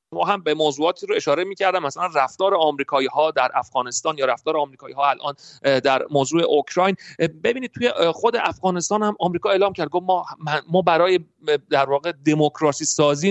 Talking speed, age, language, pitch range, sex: 170 wpm, 40-59, Persian, 145-205 Hz, male